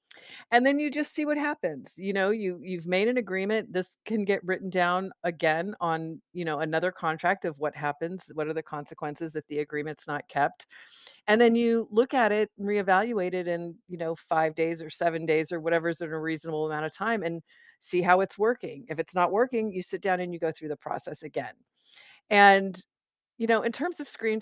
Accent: American